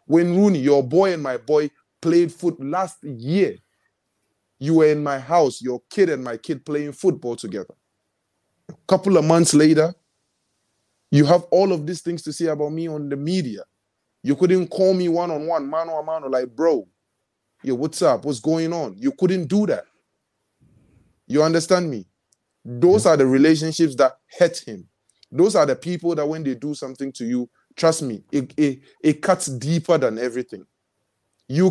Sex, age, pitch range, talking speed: male, 20-39, 135-170 Hz, 170 wpm